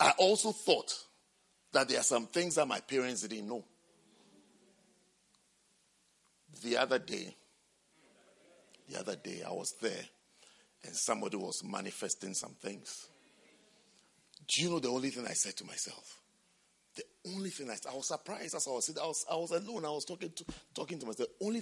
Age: 50-69